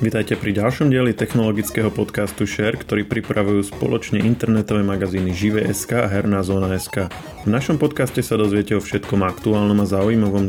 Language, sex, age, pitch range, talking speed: Slovak, male, 20-39, 105-120 Hz, 150 wpm